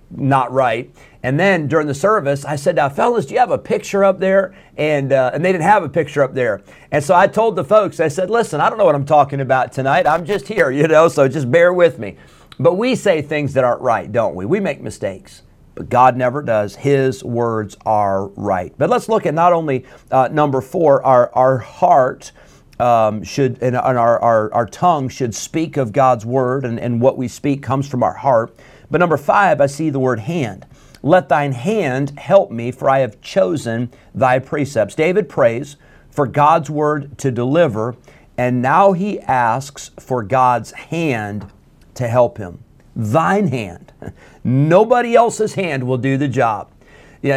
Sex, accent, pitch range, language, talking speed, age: male, American, 125-165 Hz, English, 195 wpm, 50-69